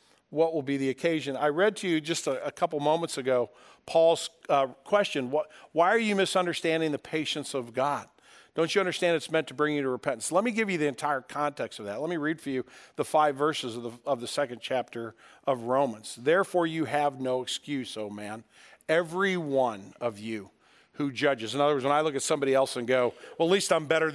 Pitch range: 140-185 Hz